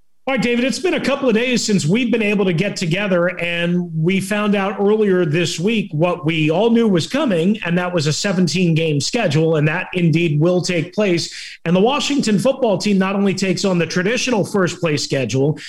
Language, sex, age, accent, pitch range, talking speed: English, male, 40-59, American, 155-190 Hz, 205 wpm